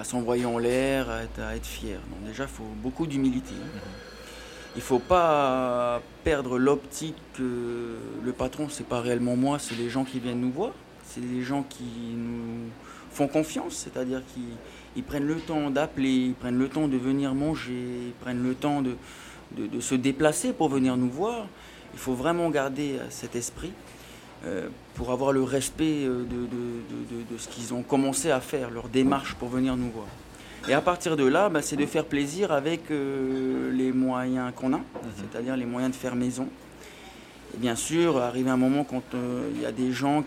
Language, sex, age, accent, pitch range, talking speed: French, male, 20-39, French, 120-140 Hz, 200 wpm